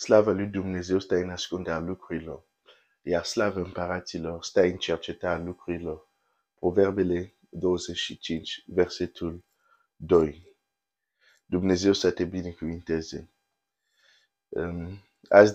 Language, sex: Romanian, male